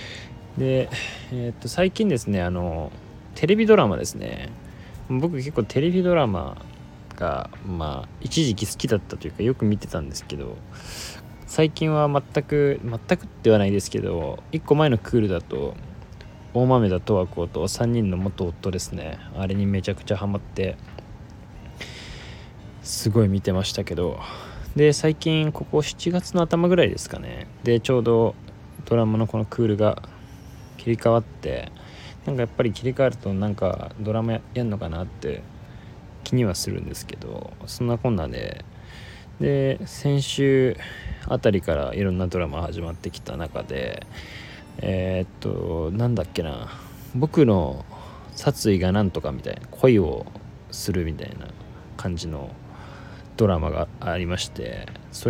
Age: 20-39